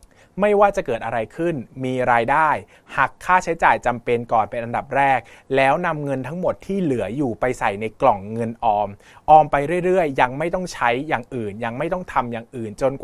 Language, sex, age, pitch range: Thai, male, 20-39, 115-155 Hz